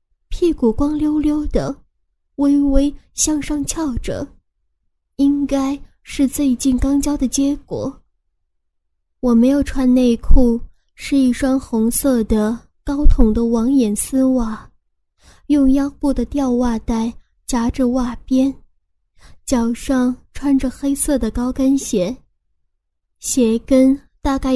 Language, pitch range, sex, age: Chinese, 230-275 Hz, female, 10-29